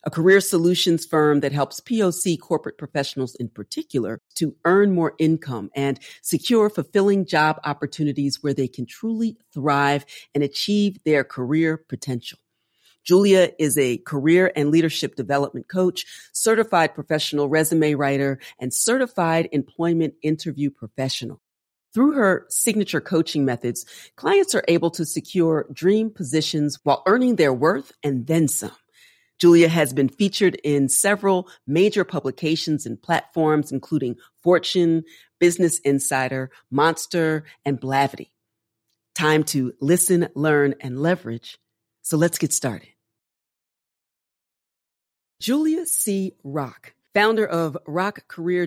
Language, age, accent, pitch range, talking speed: English, 40-59, American, 140-180 Hz, 125 wpm